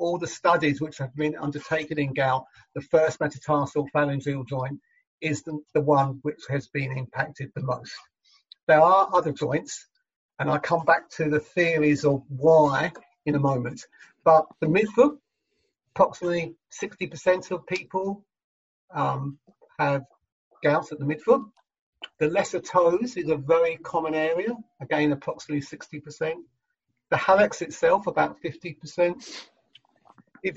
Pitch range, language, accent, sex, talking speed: 145-175 Hz, English, British, male, 135 wpm